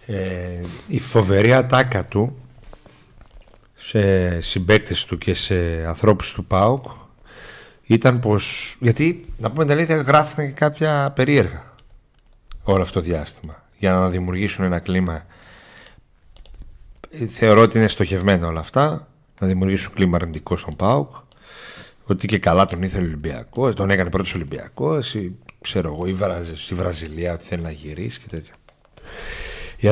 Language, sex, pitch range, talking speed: Greek, male, 95-130 Hz, 140 wpm